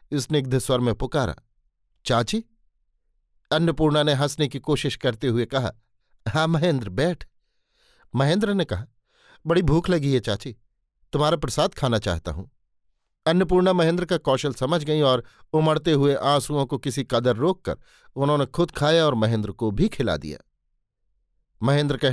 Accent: native